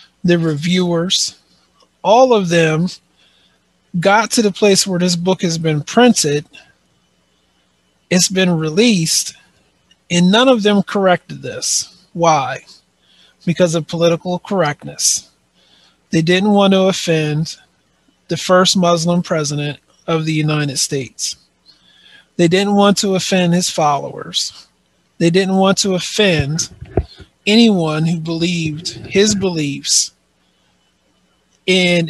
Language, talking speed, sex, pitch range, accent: English, 110 wpm, male, 140-190 Hz, American